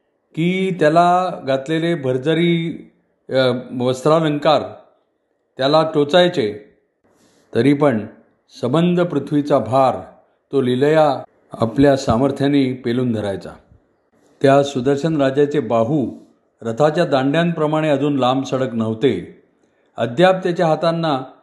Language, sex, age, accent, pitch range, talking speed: Marathi, male, 50-69, native, 125-155 Hz, 85 wpm